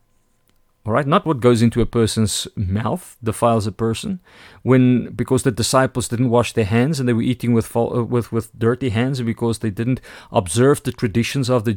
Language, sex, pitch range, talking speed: English, male, 110-135 Hz, 195 wpm